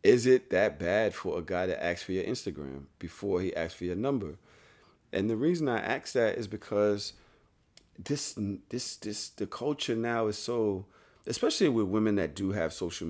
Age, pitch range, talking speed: 40-59, 95-120 Hz, 190 wpm